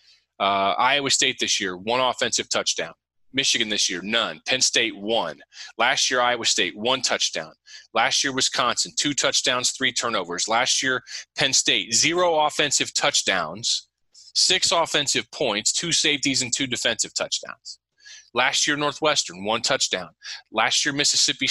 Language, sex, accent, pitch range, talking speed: English, male, American, 120-150 Hz, 145 wpm